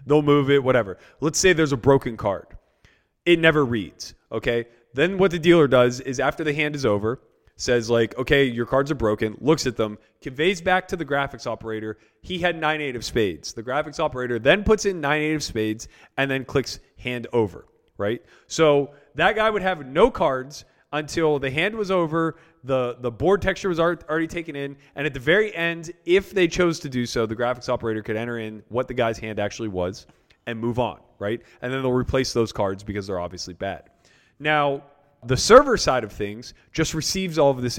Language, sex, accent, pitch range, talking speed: English, male, American, 115-160 Hz, 210 wpm